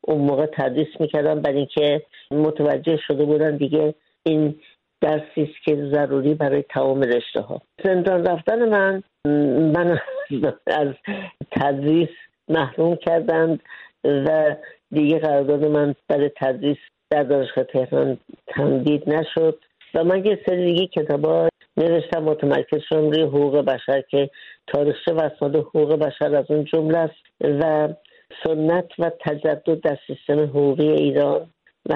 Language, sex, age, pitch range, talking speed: Persian, female, 60-79, 150-170 Hz, 125 wpm